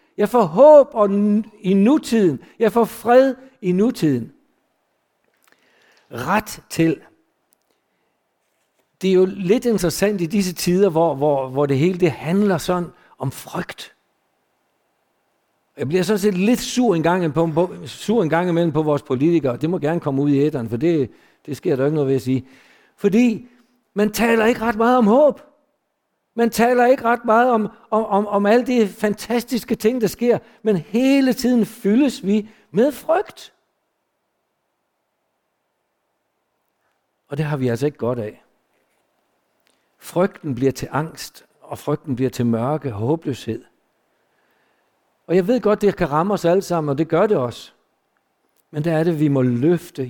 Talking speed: 165 wpm